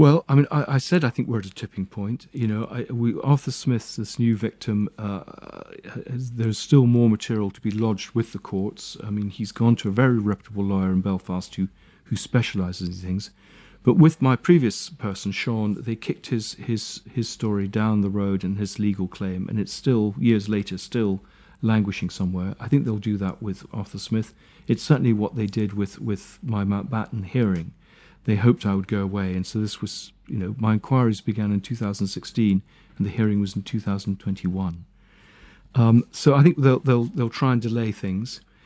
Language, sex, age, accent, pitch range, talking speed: English, male, 40-59, British, 100-120 Hz, 200 wpm